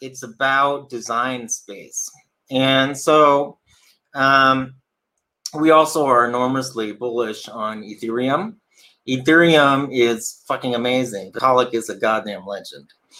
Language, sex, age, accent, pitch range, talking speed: English, male, 30-49, American, 120-145 Hz, 105 wpm